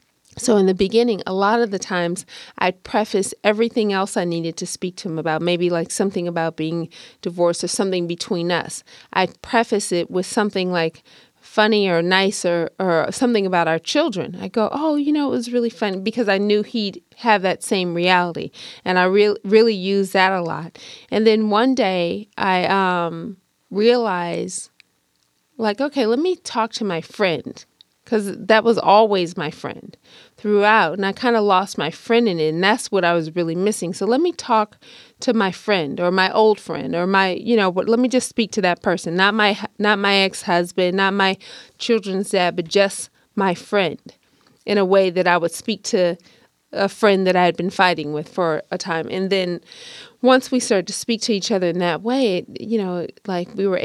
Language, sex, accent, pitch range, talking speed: English, female, American, 175-220 Hz, 200 wpm